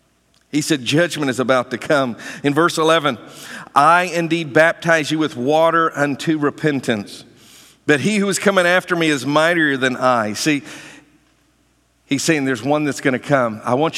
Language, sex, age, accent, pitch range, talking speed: English, male, 50-69, American, 125-165 Hz, 170 wpm